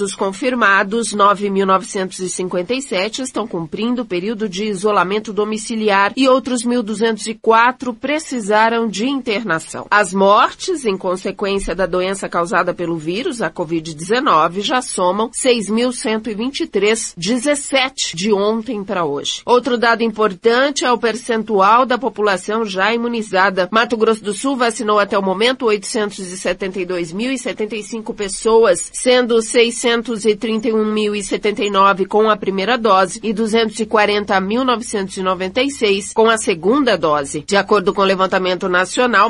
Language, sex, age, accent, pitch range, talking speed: Portuguese, female, 40-59, Brazilian, 190-230 Hz, 115 wpm